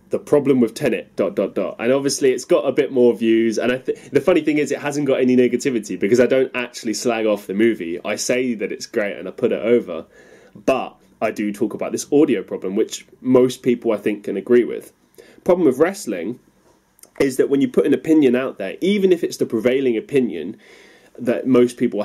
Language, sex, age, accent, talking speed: English, male, 20-39, British, 225 wpm